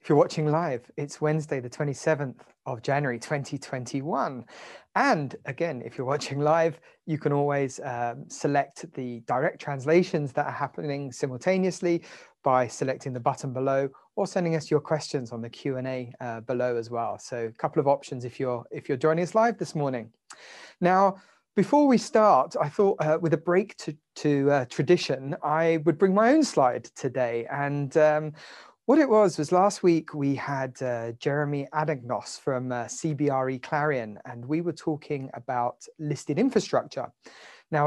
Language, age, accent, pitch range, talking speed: English, 30-49, British, 130-165 Hz, 170 wpm